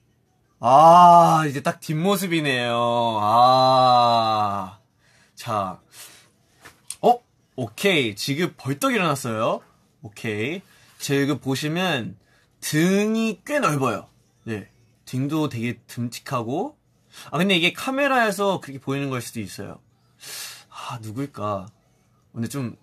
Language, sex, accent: Korean, male, native